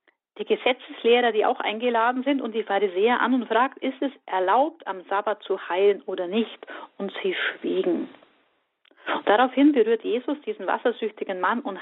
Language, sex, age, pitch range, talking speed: German, female, 40-59, 200-275 Hz, 155 wpm